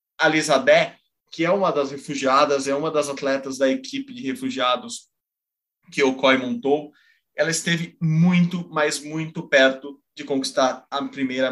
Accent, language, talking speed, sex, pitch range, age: Brazilian, Portuguese, 145 wpm, male, 130-170 Hz, 20-39